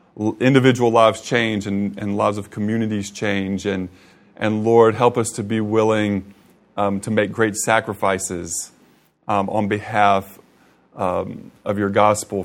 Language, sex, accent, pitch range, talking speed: English, male, American, 105-135 Hz, 140 wpm